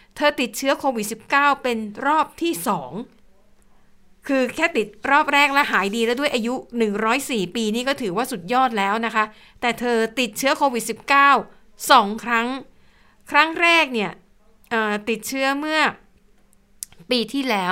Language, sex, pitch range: Thai, female, 200-250 Hz